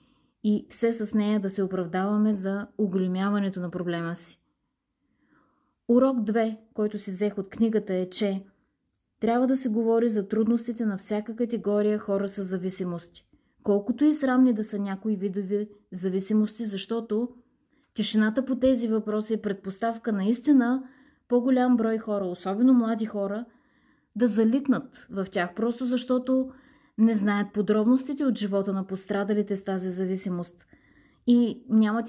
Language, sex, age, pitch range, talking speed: Bulgarian, female, 20-39, 200-245 Hz, 135 wpm